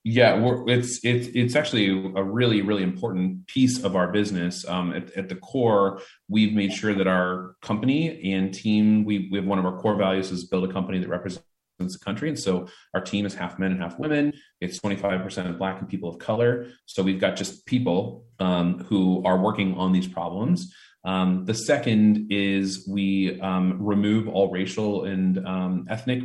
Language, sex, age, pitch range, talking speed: English, male, 30-49, 95-110 Hz, 190 wpm